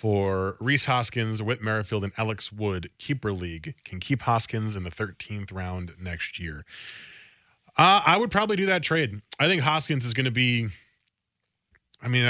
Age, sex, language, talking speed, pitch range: 20-39, male, English, 175 wpm, 105-135 Hz